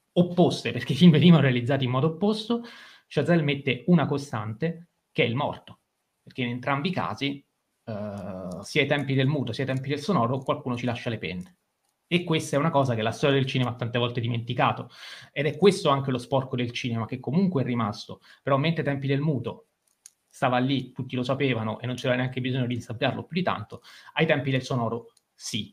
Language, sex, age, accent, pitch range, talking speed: Italian, male, 30-49, native, 125-150 Hz, 210 wpm